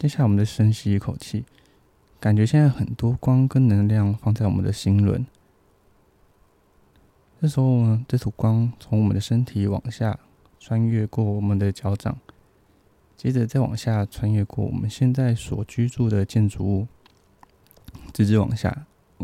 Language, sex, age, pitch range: Chinese, male, 20-39, 100-120 Hz